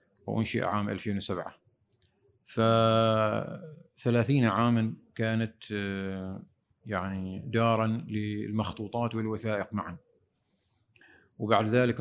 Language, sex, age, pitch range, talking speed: Arabic, male, 40-59, 105-130 Hz, 70 wpm